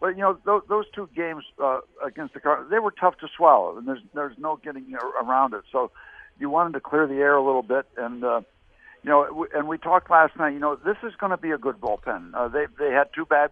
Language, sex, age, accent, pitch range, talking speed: English, male, 60-79, American, 135-170 Hz, 260 wpm